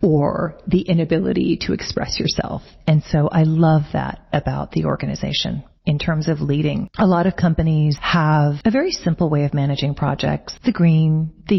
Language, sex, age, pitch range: English, female, 40-59, 150-185 Hz